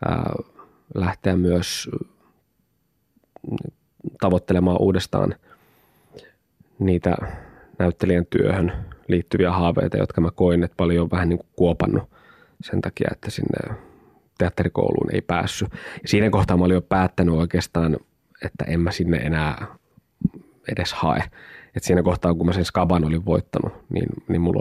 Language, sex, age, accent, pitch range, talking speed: Finnish, male, 20-39, native, 85-100 Hz, 125 wpm